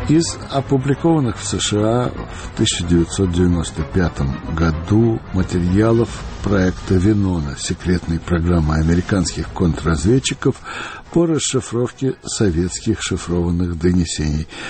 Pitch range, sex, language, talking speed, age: 85-115 Hz, male, Russian, 80 wpm, 60-79